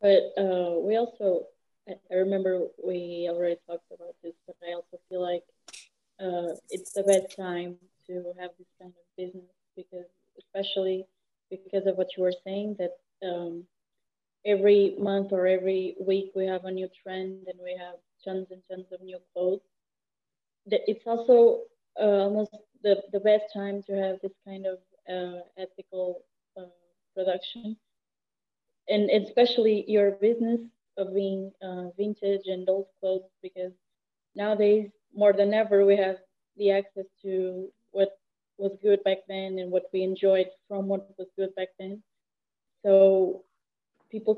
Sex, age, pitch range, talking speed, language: female, 20-39, 185-210 Hz, 150 wpm, English